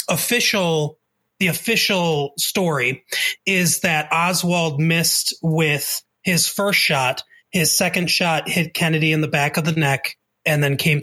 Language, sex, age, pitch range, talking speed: English, male, 30-49, 145-175 Hz, 140 wpm